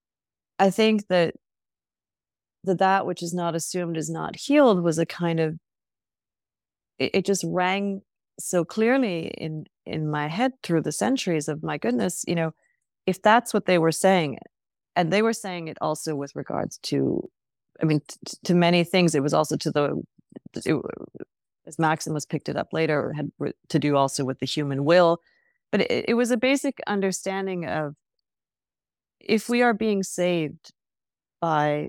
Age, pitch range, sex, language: 30-49, 160-200 Hz, female, English